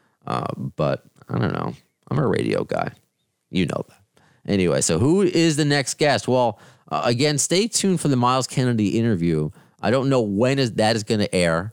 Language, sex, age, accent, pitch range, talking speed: English, male, 30-49, American, 85-125 Hz, 200 wpm